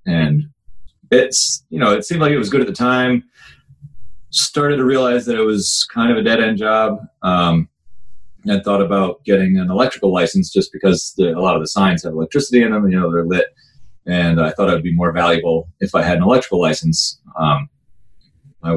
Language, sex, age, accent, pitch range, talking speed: English, male, 30-49, American, 90-125 Hz, 210 wpm